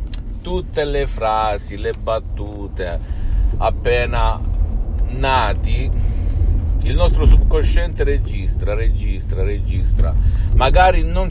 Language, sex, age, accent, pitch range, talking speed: Italian, male, 50-69, native, 85-105 Hz, 80 wpm